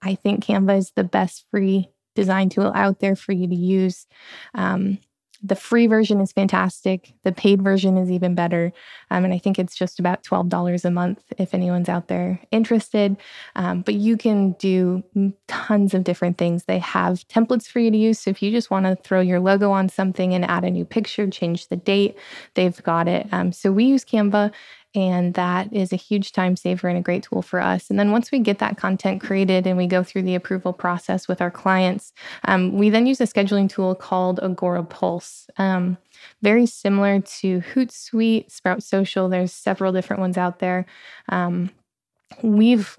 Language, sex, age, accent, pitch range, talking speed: English, female, 20-39, American, 180-205 Hz, 195 wpm